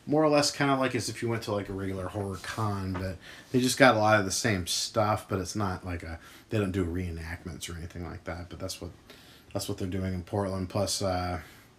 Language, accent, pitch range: English, American, 95-120 Hz